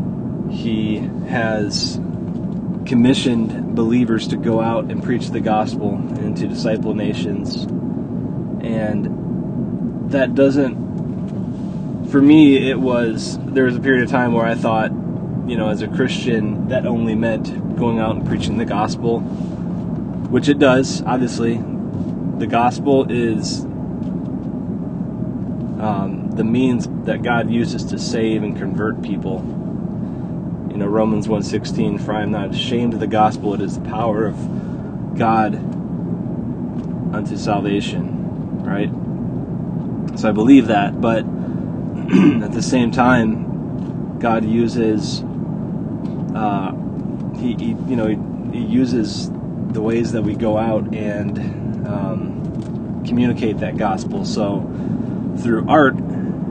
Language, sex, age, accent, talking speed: English, male, 20-39, American, 120 wpm